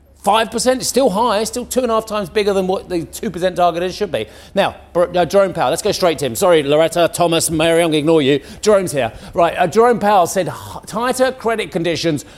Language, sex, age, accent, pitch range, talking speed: English, male, 40-59, British, 150-205 Hz, 220 wpm